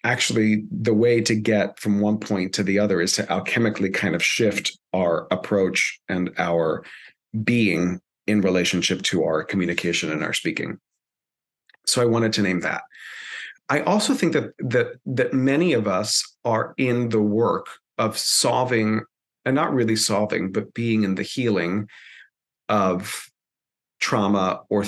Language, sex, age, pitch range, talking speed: English, male, 40-59, 100-125 Hz, 150 wpm